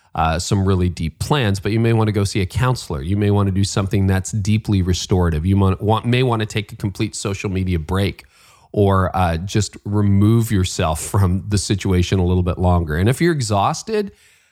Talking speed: 205 wpm